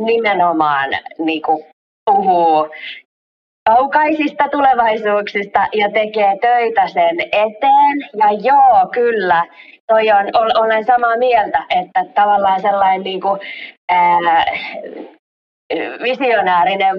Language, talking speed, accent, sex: Finnish, 80 wpm, native, female